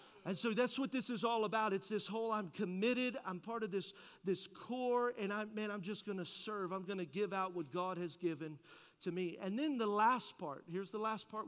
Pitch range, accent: 185-215 Hz, American